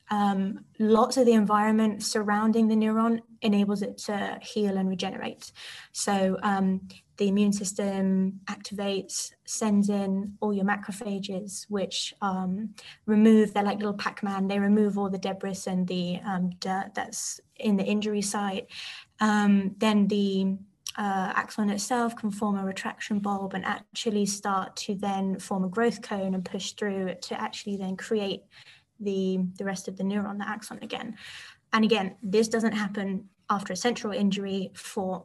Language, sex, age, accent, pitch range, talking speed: English, female, 20-39, British, 195-220 Hz, 155 wpm